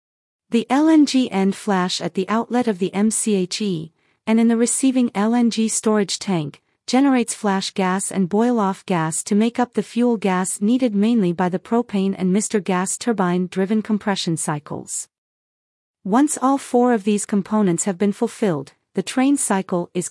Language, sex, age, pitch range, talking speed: English, female, 40-59, 185-230 Hz, 155 wpm